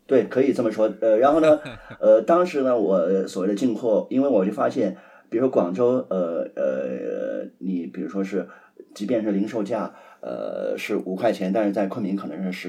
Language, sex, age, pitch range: Chinese, male, 30-49, 95-110 Hz